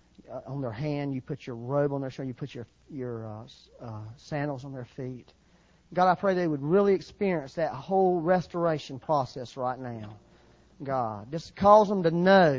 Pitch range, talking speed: 125-175 Hz, 185 wpm